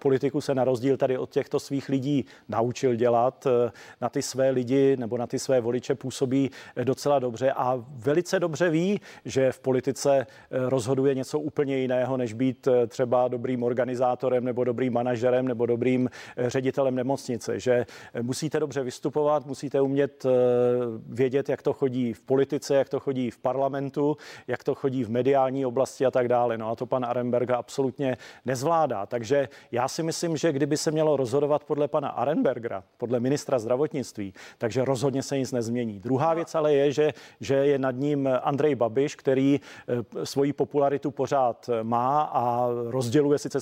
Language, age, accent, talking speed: Czech, 40-59, native, 160 wpm